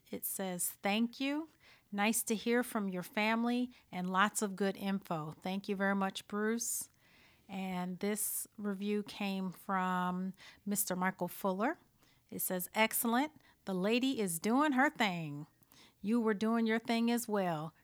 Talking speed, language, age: 150 wpm, English, 40-59